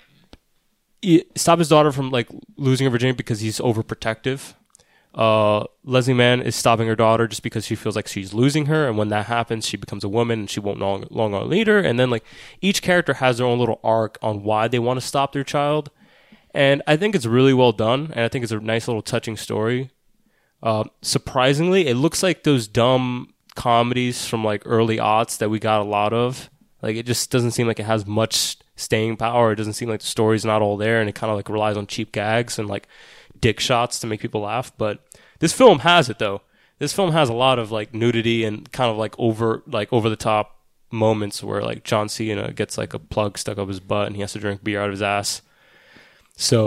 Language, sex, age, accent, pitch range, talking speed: English, male, 20-39, American, 110-140 Hz, 230 wpm